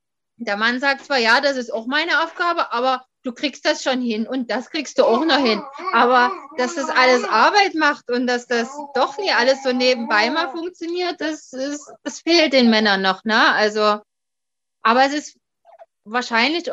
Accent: German